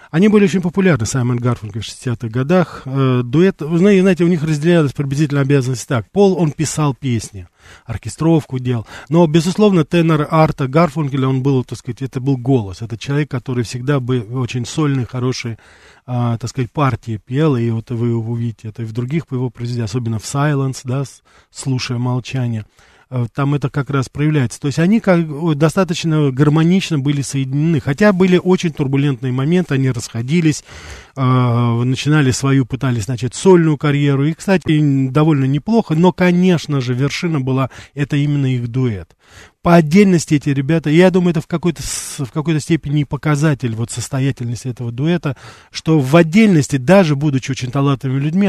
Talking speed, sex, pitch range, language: 160 wpm, male, 125-160 Hz, Russian